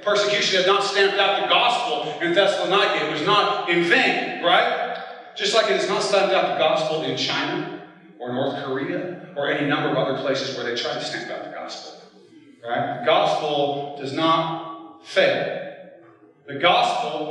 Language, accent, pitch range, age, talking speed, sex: English, American, 150-205 Hz, 40-59, 175 wpm, male